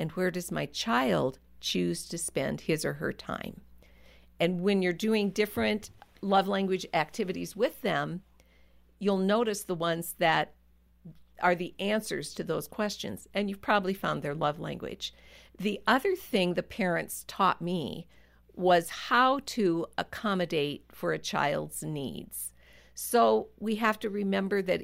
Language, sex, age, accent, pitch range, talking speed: English, female, 50-69, American, 150-205 Hz, 145 wpm